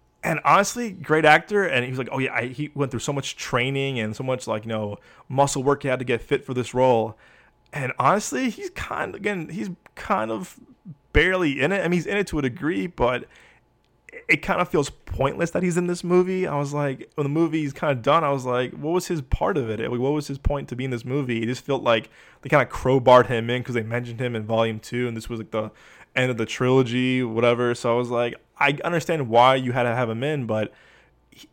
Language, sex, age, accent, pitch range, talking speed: English, male, 20-39, American, 120-145 Hz, 250 wpm